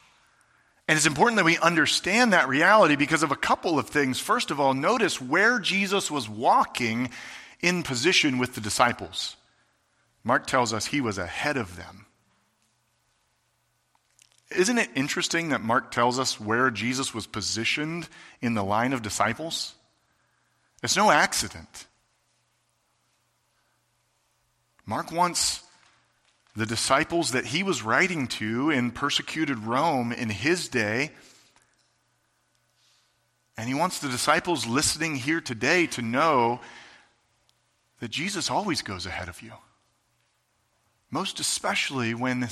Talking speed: 125 wpm